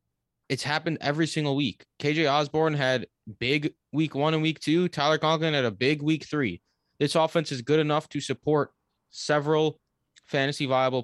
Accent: American